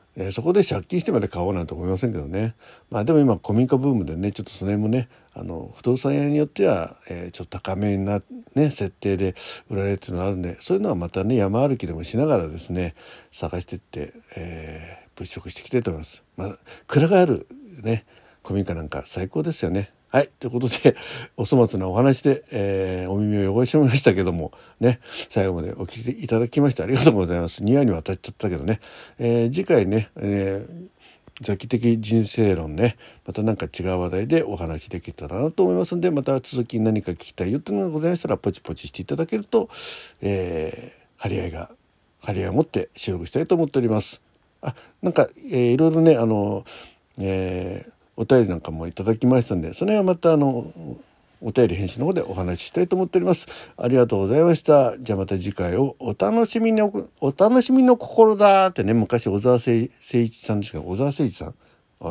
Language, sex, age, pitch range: Japanese, male, 60-79, 95-135 Hz